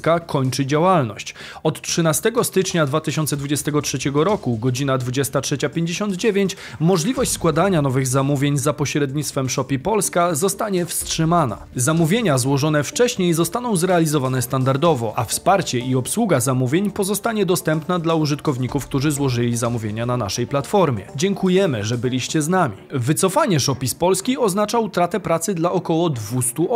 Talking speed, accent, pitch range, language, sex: 125 wpm, native, 130-180 Hz, Polish, male